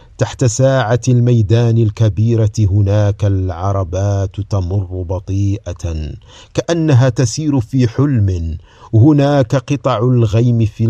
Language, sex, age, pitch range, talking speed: Arabic, male, 50-69, 100-120 Hz, 90 wpm